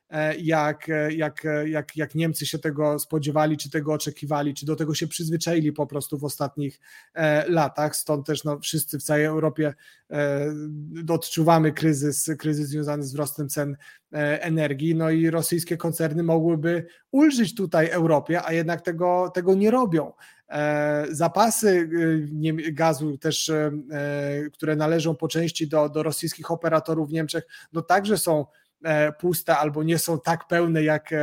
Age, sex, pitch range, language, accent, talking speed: 30-49, male, 150-165 Hz, Polish, native, 150 wpm